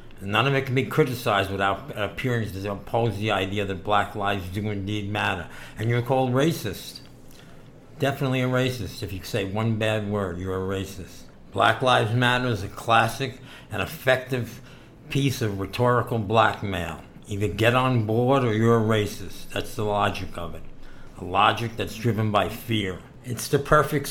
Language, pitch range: English, 105-120 Hz